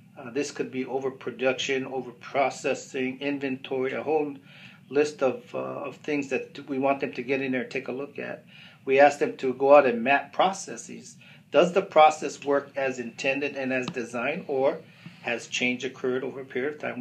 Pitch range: 130-155 Hz